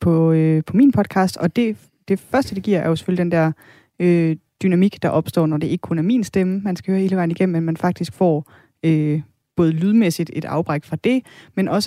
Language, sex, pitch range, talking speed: Danish, female, 160-190 Hz, 235 wpm